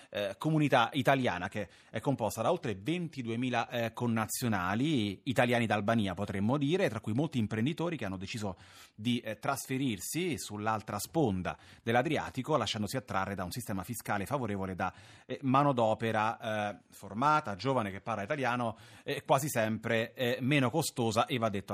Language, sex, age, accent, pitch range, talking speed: Italian, male, 30-49, native, 100-130 Hz, 145 wpm